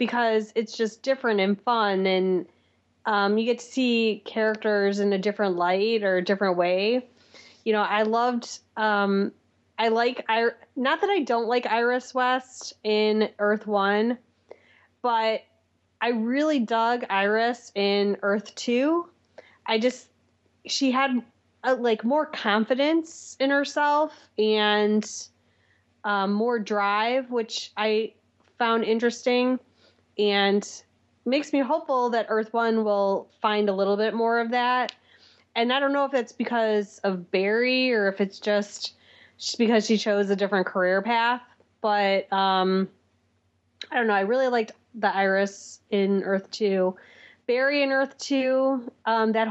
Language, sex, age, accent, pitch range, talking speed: English, female, 20-39, American, 200-245 Hz, 140 wpm